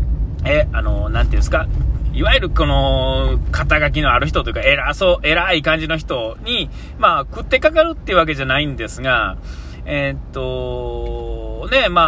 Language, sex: Japanese, male